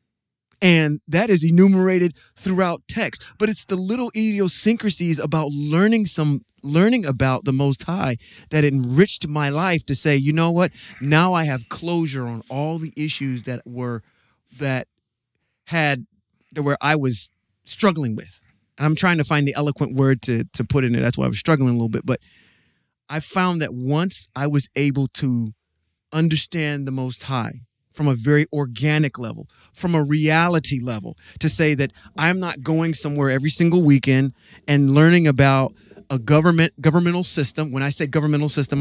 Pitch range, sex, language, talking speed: 130-165 Hz, male, English, 170 wpm